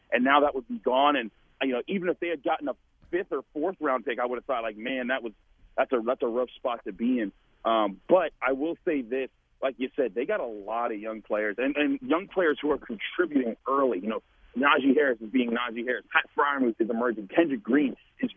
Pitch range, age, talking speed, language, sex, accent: 125-165 Hz, 40-59, 250 wpm, English, male, American